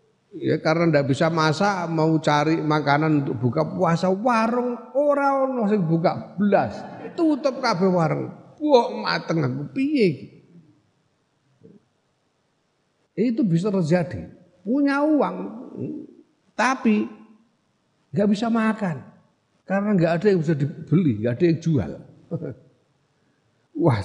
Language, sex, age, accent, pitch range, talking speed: Indonesian, male, 50-69, native, 105-165 Hz, 100 wpm